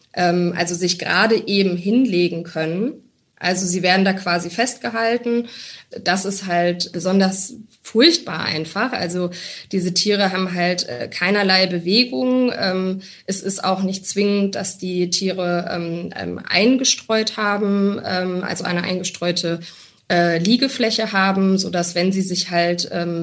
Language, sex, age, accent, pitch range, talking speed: German, female, 20-39, German, 175-205 Hz, 120 wpm